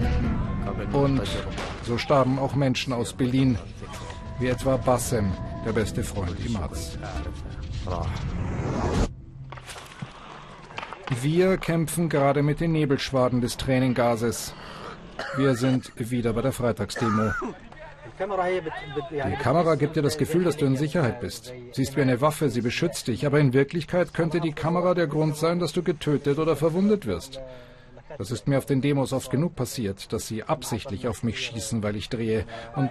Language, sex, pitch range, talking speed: German, male, 115-145 Hz, 150 wpm